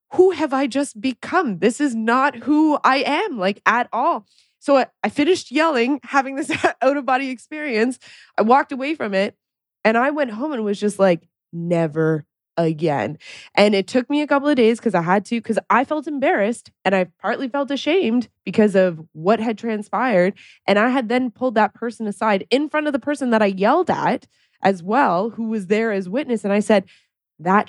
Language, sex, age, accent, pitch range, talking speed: English, female, 20-39, American, 180-245 Hz, 200 wpm